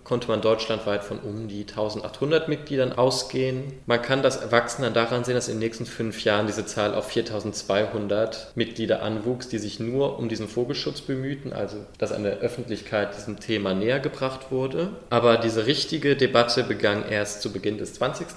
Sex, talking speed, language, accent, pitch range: male, 175 wpm, German, German, 110-135 Hz